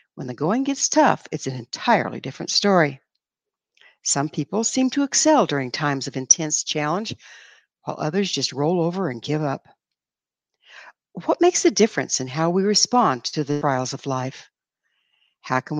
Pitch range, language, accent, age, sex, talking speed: 145-220 Hz, English, American, 60-79, female, 165 wpm